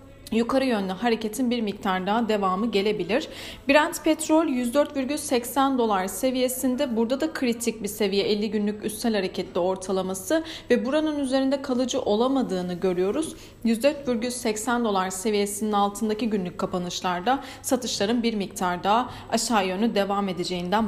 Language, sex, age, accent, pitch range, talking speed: Turkish, female, 40-59, native, 200-260 Hz, 125 wpm